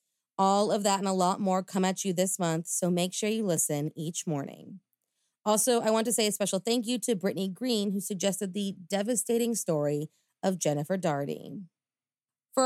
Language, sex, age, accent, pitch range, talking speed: English, female, 30-49, American, 175-230 Hz, 190 wpm